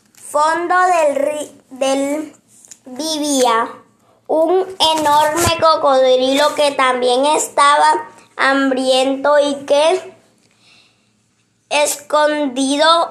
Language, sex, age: Spanish, male, 20-39